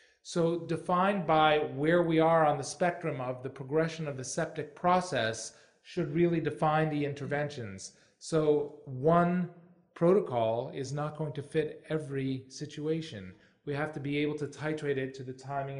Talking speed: 160 wpm